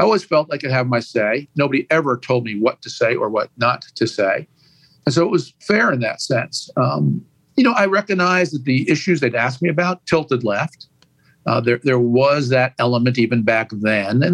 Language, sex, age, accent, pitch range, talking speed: English, male, 50-69, American, 120-165 Hz, 220 wpm